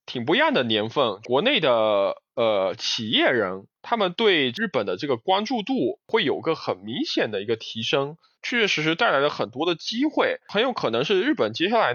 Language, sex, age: Chinese, male, 20-39